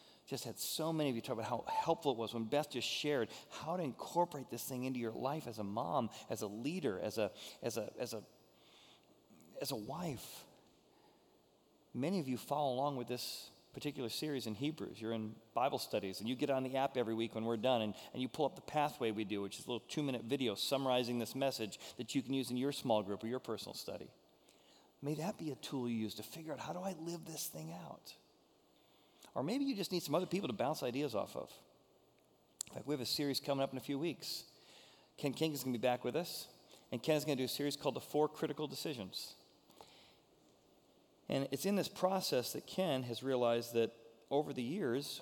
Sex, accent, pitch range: male, American, 115-150 Hz